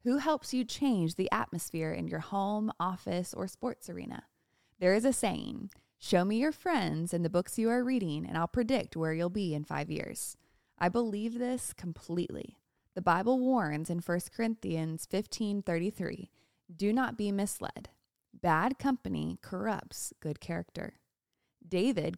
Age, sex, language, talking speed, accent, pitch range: 20-39, female, English, 155 wpm, American, 175-230 Hz